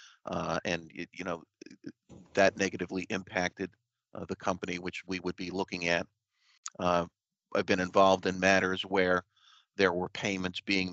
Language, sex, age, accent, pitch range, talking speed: English, male, 40-59, American, 90-100 Hz, 150 wpm